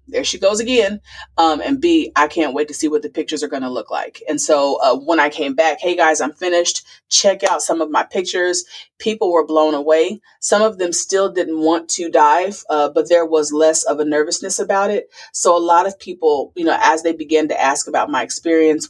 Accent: American